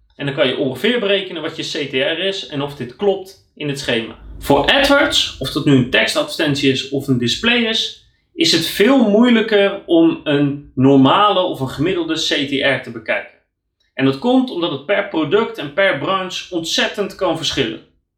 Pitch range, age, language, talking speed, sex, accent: 135-210 Hz, 30-49, Dutch, 180 wpm, male, Dutch